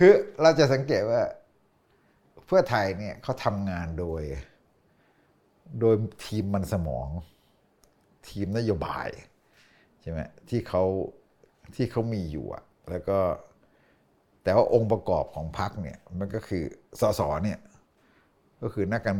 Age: 60-79